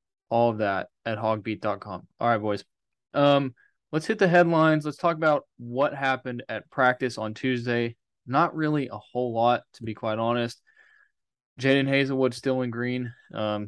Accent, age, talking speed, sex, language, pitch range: American, 20-39, 160 wpm, male, English, 110-135 Hz